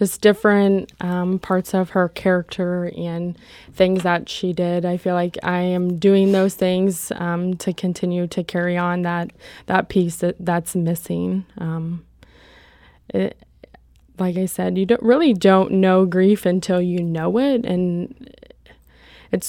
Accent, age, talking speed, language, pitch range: American, 20-39, 150 wpm, English, 175-210 Hz